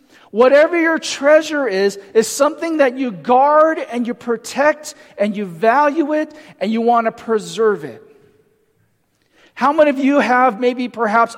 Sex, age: male, 40-59